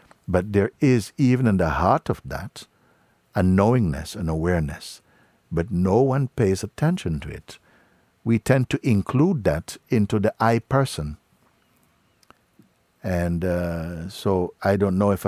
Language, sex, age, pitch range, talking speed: English, male, 60-79, 85-110 Hz, 140 wpm